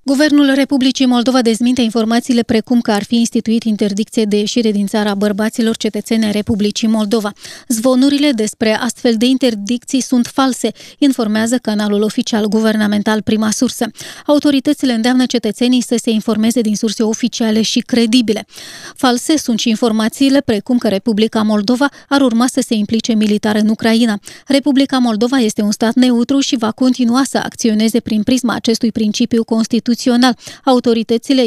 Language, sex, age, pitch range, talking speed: Romanian, female, 20-39, 220-250 Hz, 145 wpm